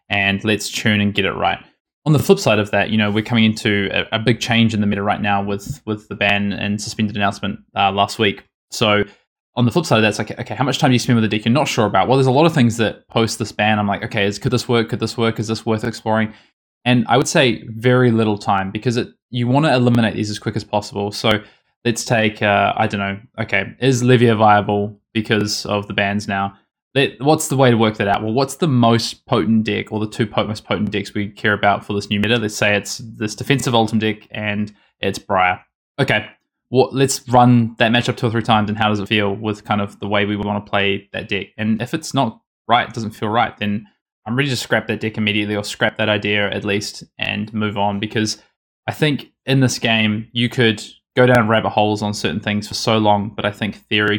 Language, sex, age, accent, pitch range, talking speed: English, male, 20-39, Australian, 105-120 Hz, 250 wpm